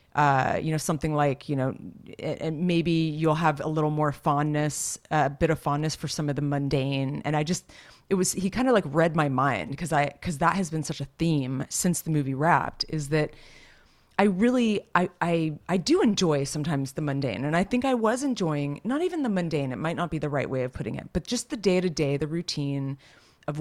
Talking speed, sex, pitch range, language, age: 225 wpm, female, 145-175 Hz, English, 30-49